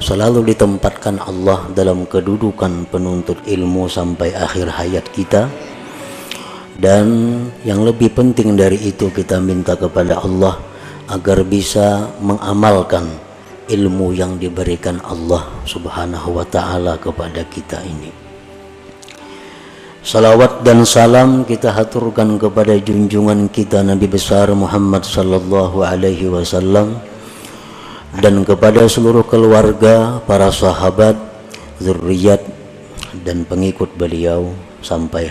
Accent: native